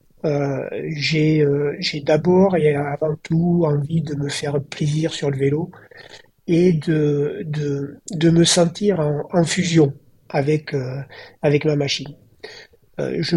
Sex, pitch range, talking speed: male, 140-165 Hz, 130 wpm